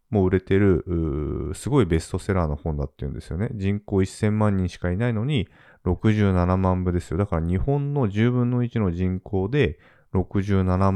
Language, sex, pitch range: Japanese, male, 80-110 Hz